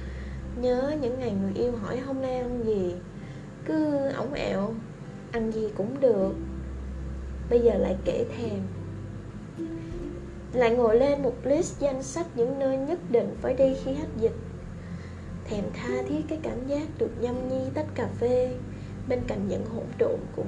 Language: Vietnamese